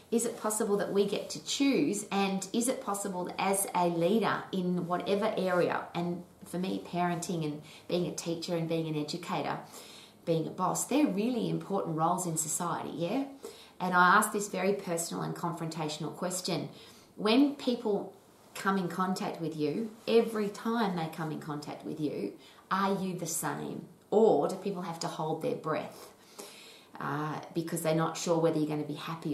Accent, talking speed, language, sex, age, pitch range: Australian, 180 wpm, English, female, 30-49, 155-195 Hz